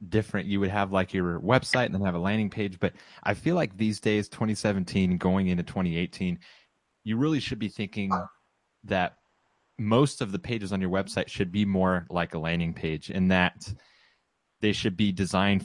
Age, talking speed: 30-49, 190 wpm